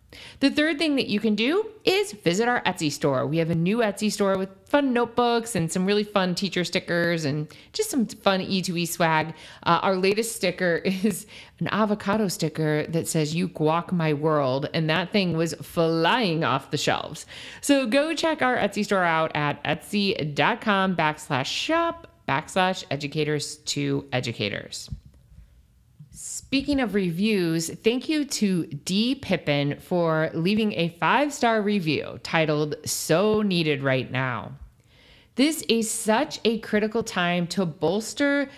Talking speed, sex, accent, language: 150 wpm, female, American, English